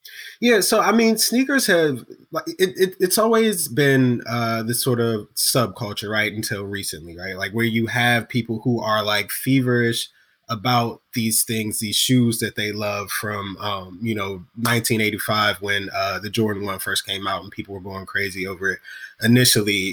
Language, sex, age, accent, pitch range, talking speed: English, male, 20-39, American, 105-130 Hz, 180 wpm